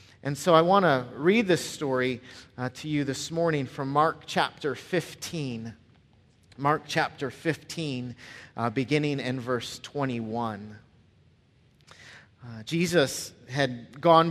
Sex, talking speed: male, 120 wpm